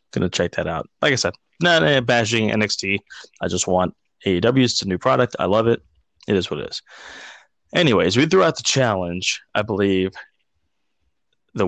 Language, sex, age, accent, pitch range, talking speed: English, male, 20-39, American, 95-115 Hz, 185 wpm